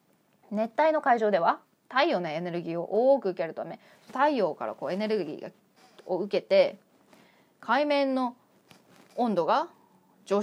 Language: Japanese